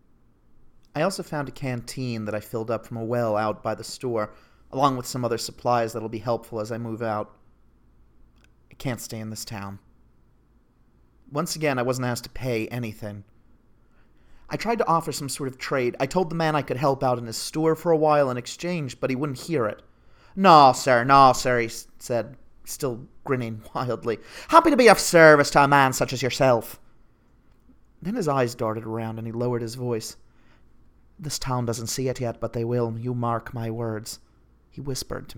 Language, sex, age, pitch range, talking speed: English, male, 30-49, 115-135 Hz, 200 wpm